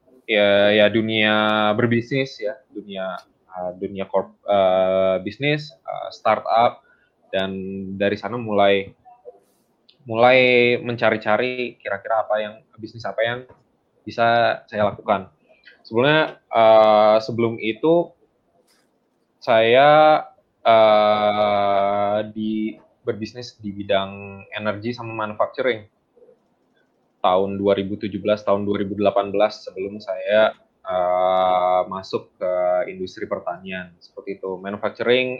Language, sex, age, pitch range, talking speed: Malay, male, 20-39, 95-115 Hz, 95 wpm